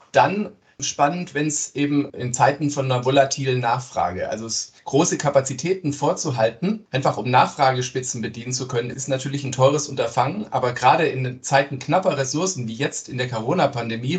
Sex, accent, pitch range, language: male, German, 125-150 Hz, German